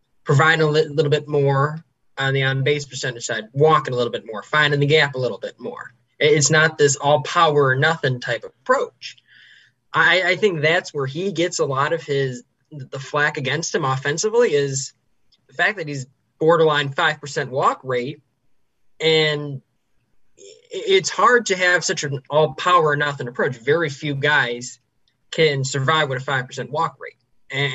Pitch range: 135-165 Hz